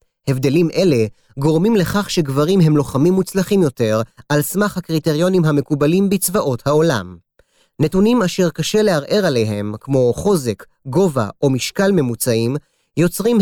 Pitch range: 135-185 Hz